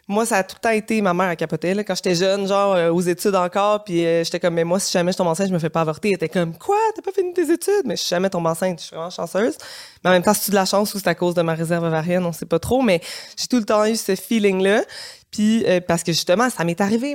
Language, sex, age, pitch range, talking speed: French, female, 20-39, 175-220 Hz, 315 wpm